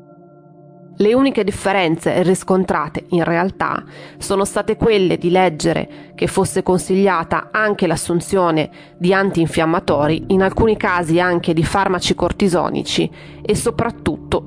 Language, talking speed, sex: Italian, 110 wpm, female